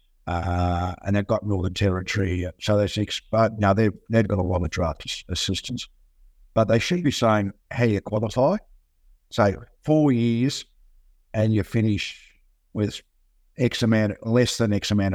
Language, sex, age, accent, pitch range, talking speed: English, male, 50-69, Australian, 90-115 Hz, 165 wpm